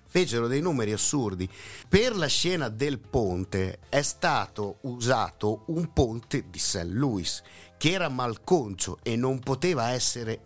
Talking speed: 140 wpm